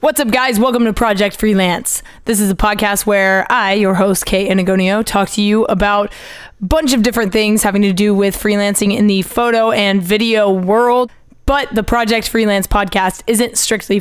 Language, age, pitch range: English, 20-39, 190-220 Hz